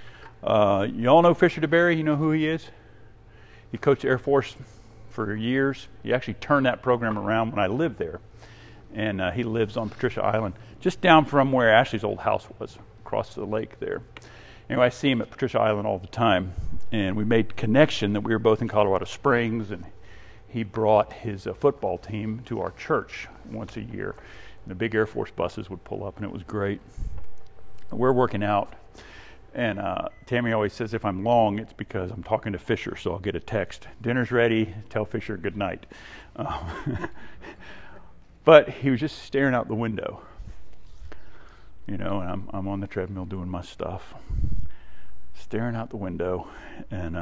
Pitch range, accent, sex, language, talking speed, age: 100-125 Hz, American, male, English, 185 wpm, 50-69